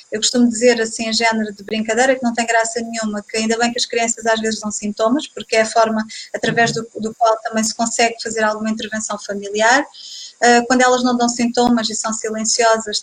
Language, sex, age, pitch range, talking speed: Portuguese, female, 20-39, 220-245 Hz, 215 wpm